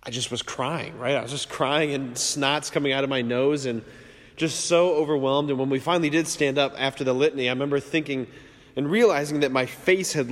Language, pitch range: English, 125-150 Hz